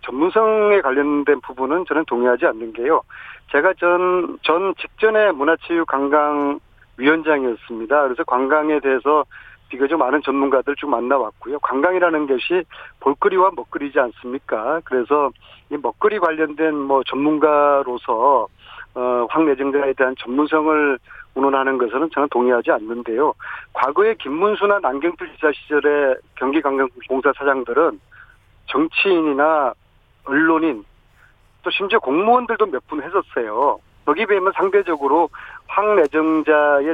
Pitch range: 135-180 Hz